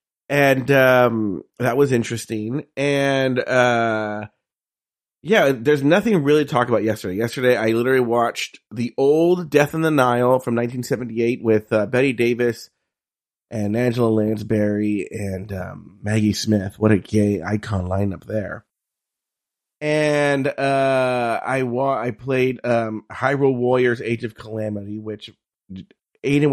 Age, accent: 30-49, American